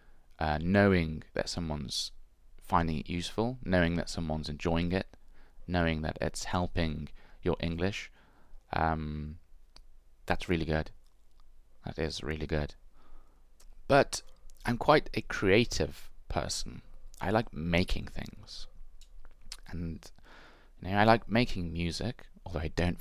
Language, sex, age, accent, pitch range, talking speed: English, male, 30-49, British, 80-95 Hz, 115 wpm